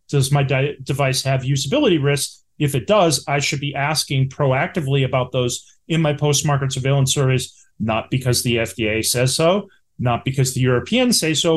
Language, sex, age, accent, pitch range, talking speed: English, male, 30-49, American, 135-165 Hz, 175 wpm